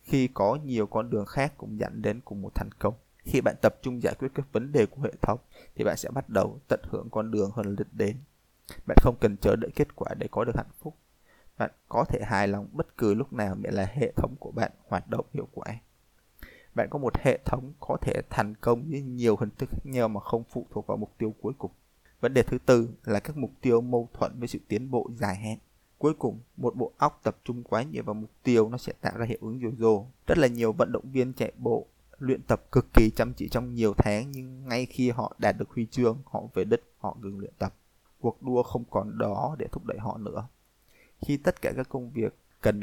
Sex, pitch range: male, 105-125 Hz